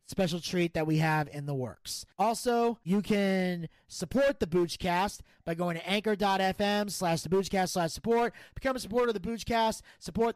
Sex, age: male, 30-49